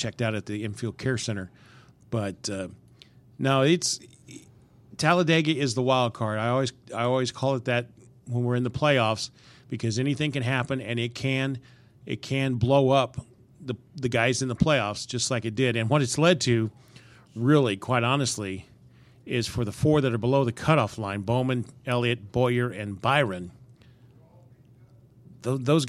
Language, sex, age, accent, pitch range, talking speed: English, male, 40-59, American, 115-135 Hz, 170 wpm